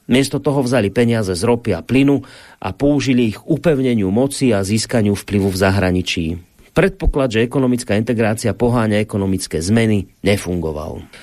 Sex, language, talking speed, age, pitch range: male, Slovak, 140 wpm, 40-59, 120-155 Hz